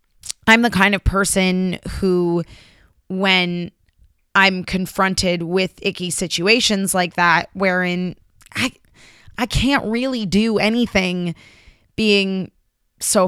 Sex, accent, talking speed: female, American, 105 wpm